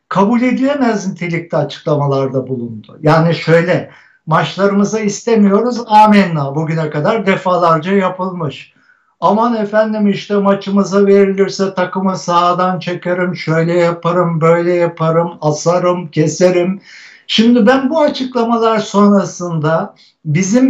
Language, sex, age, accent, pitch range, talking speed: Turkish, male, 60-79, native, 165-215 Hz, 95 wpm